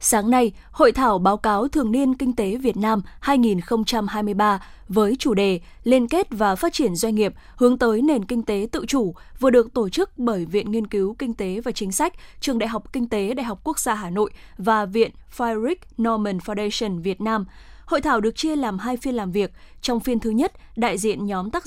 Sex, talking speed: female, 215 wpm